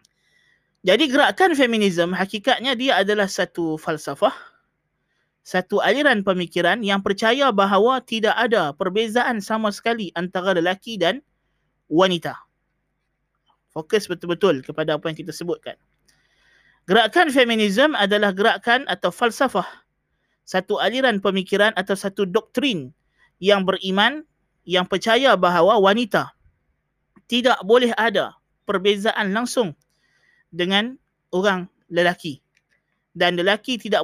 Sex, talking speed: male, 105 wpm